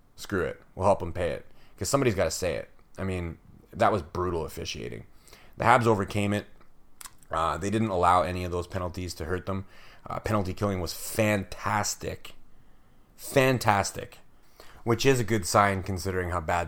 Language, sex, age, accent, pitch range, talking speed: English, male, 30-49, American, 90-110 Hz, 175 wpm